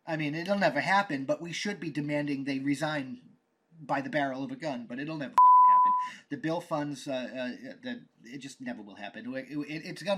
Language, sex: English, male